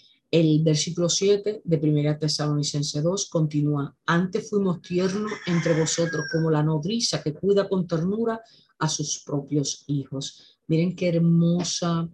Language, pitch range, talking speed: Spanish, 150-185 Hz, 135 wpm